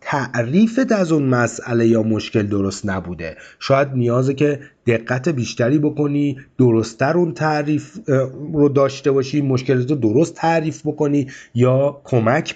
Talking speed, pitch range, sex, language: 130 wpm, 115-150 Hz, male, Persian